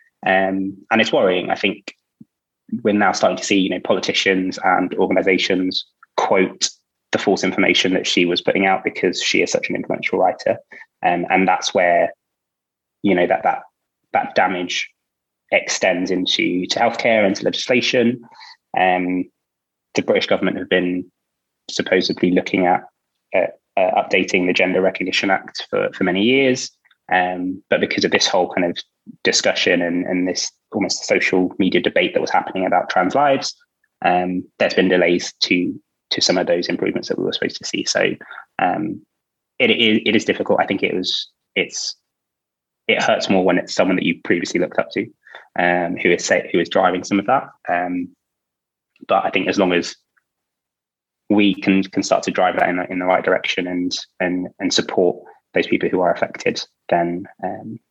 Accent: British